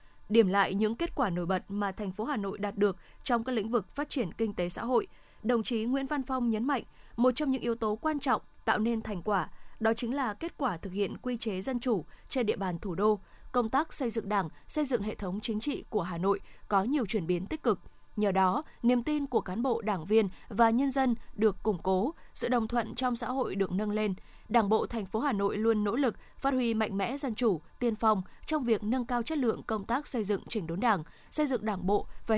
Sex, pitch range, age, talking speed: female, 200-245 Hz, 20-39, 255 wpm